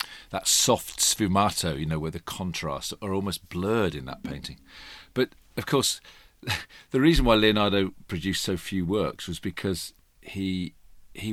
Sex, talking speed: male, 155 wpm